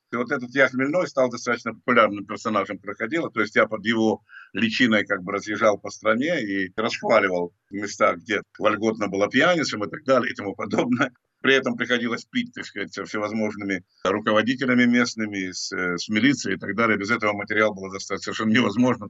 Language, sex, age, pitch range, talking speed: Russian, male, 50-69, 105-130 Hz, 170 wpm